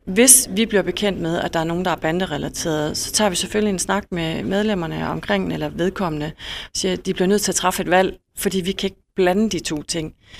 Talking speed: 240 wpm